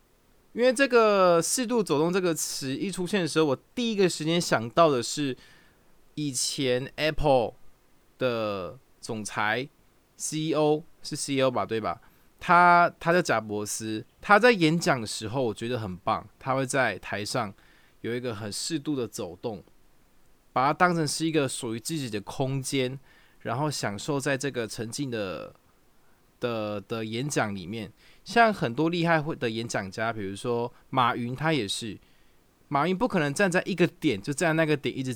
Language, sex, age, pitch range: Chinese, male, 20-39, 115-160 Hz